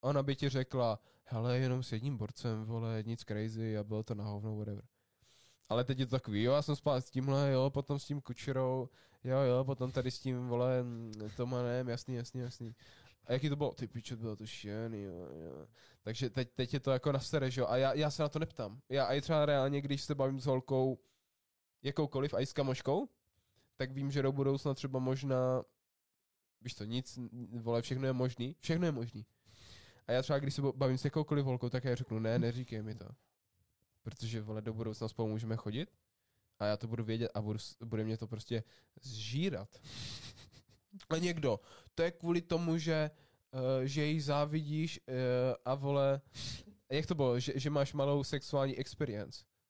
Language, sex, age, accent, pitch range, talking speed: Czech, male, 20-39, native, 115-140 Hz, 195 wpm